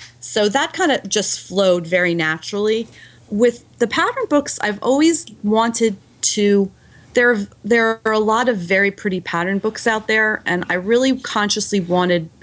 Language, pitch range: English, 160-200 Hz